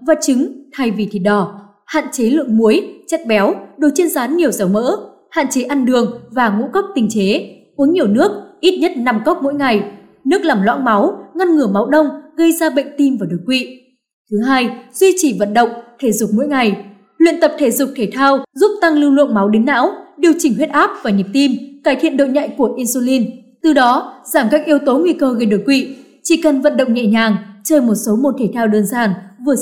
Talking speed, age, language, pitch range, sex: 230 wpm, 20-39, Vietnamese, 225-300 Hz, female